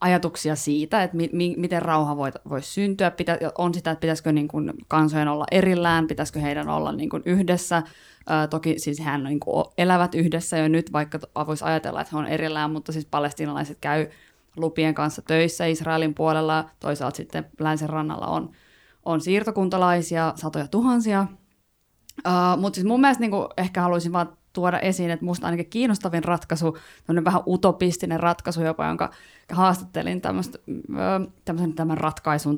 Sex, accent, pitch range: female, native, 155-180 Hz